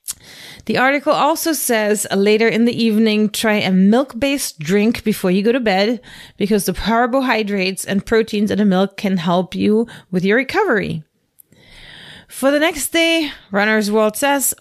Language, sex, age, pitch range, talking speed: English, female, 30-49, 185-225 Hz, 155 wpm